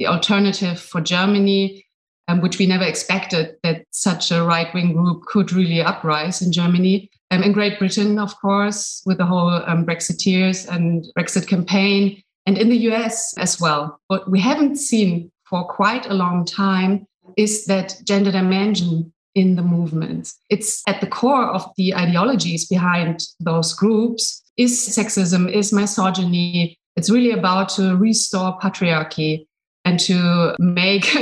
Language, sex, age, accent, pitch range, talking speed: English, female, 30-49, German, 175-205 Hz, 150 wpm